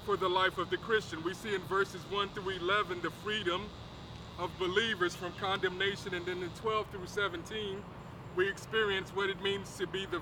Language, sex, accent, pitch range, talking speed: English, male, American, 185-235 Hz, 195 wpm